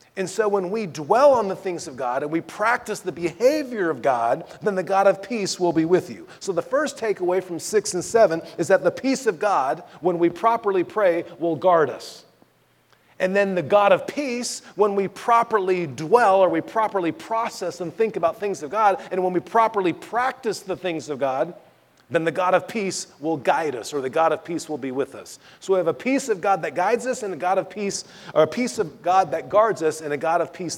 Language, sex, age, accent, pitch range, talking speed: English, male, 40-59, American, 165-220 Hz, 235 wpm